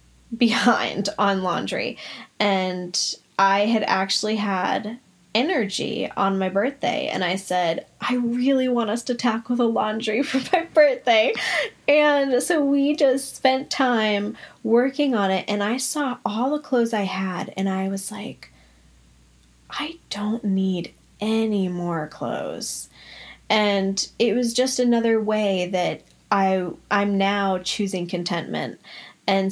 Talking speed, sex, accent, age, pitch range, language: 135 wpm, female, American, 10-29, 185-230 Hz, English